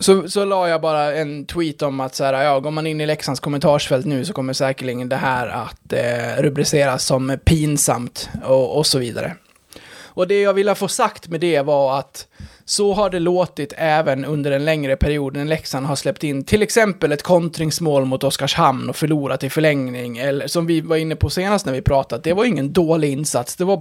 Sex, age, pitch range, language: male, 20-39, 135-170 Hz, Swedish